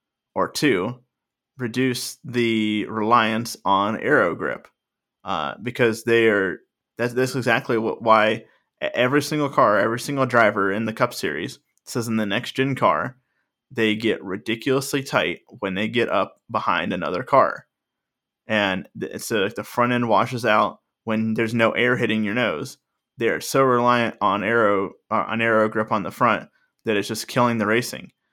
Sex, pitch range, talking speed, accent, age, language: male, 110-125 Hz, 165 wpm, American, 20-39, English